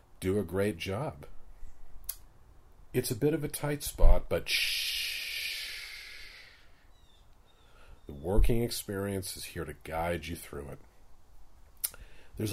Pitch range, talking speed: 80-100 Hz, 115 wpm